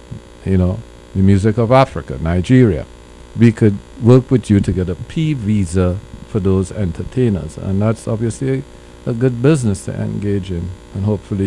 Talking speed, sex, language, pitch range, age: 165 wpm, male, English, 90-115 Hz, 50-69